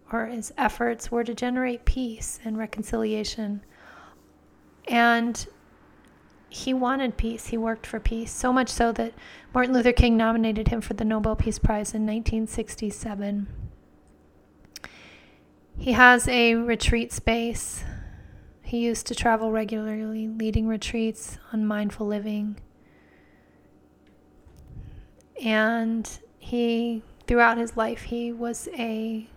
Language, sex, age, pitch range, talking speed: English, female, 30-49, 210-235 Hz, 115 wpm